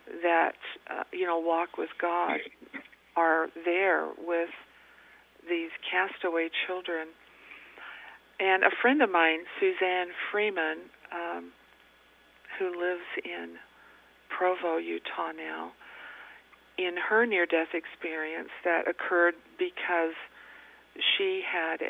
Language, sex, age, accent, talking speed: English, female, 50-69, American, 100 wpm